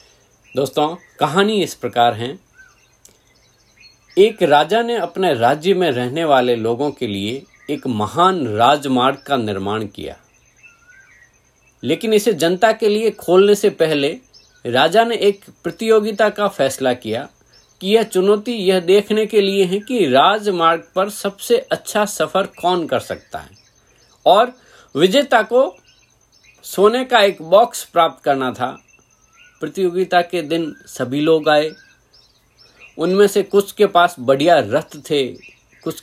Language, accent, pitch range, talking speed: Hindi, native, 125-195 Hz, 135 wpm